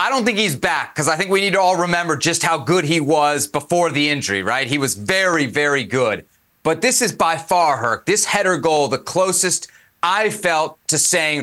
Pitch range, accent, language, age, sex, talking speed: 165-215 Hz, American, English, 30-49, male, 220 wpm